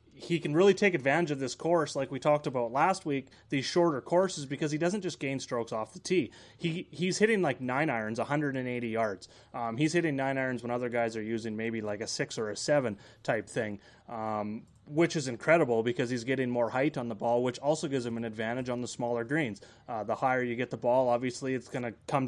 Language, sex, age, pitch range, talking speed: English, male, 30-49, 120-155 Hz, 235 wpm